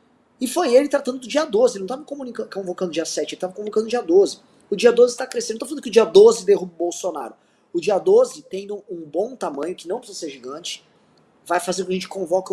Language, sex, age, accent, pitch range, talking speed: Portuguese, male, 20-39, Brazilian, 185-275 Hz, 265 wpm